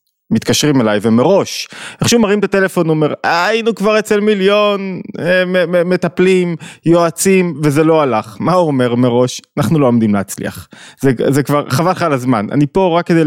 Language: Hebrew